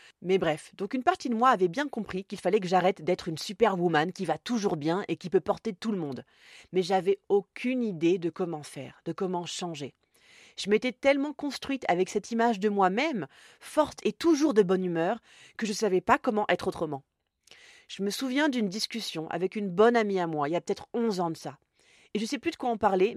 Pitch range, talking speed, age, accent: 175-235 Hz, 230 wpm, 30-49, French